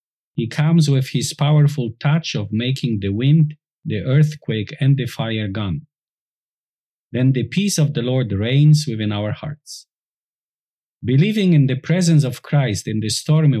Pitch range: 115-150 Hz